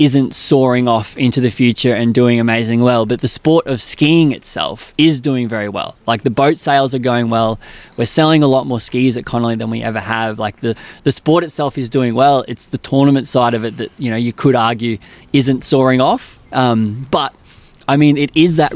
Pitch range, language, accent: 115-140 Hz, English, Australian